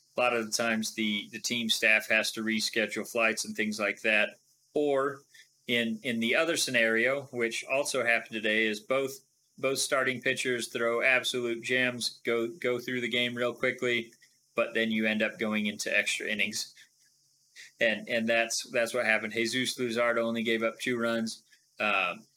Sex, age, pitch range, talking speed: male, 30-49, 110-125 Hz, 175 wpm